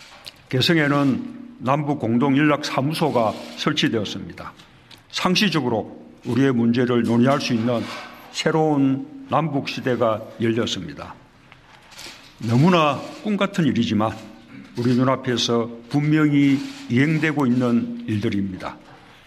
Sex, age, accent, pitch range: male, 50-69, native, 120-150 Hz